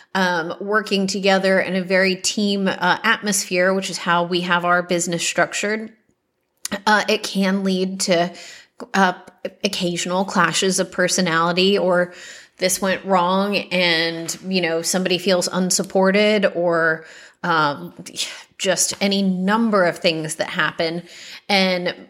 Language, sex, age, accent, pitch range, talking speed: English, female, 30-49, American, 180-200 Hz, 130 wpm